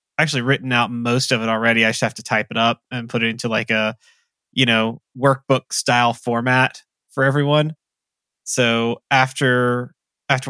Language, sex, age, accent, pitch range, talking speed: English, male, 20-39, American, 115-125 Hz, 170 wpm